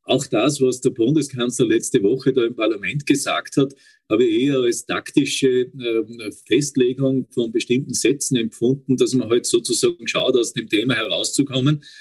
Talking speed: 155 wpm